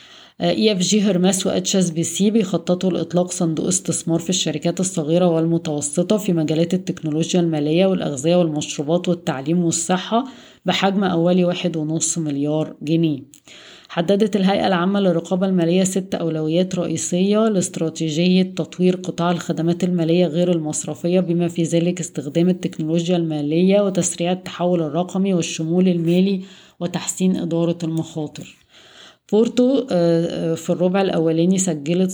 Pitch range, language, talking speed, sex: 165-185 Hz, Arabic, 115 wpm, female